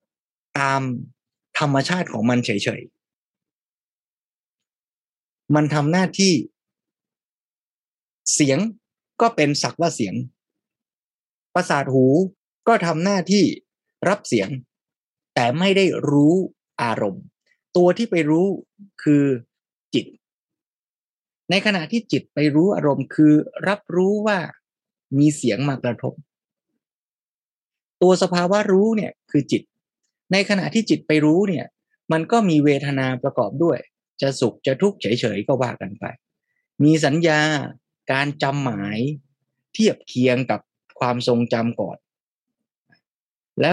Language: Thai